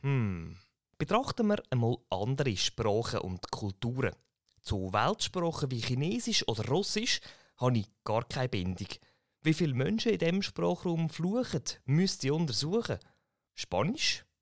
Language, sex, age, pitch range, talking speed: German, male, 30-49, 110-170 Hz, 125 wpm